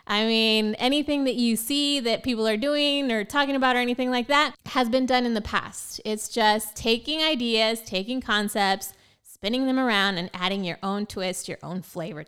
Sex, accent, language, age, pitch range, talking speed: female, American, English, 20-39, 185-250 Hz, 195 wpm